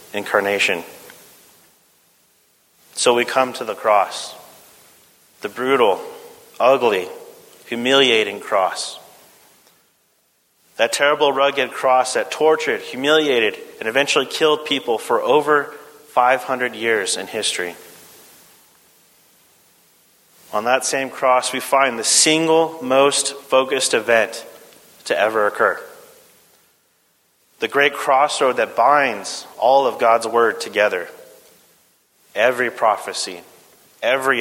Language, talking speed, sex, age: English, 100 wpm, male, 30-49